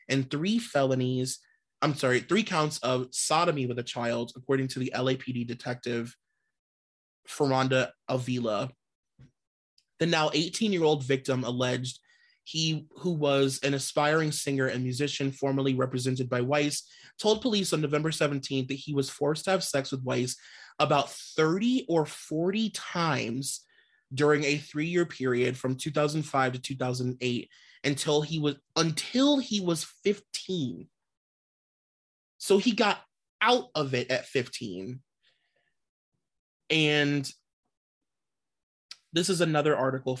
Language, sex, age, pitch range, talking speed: English, male, 30-49, 130-155 Hz, 125 wpm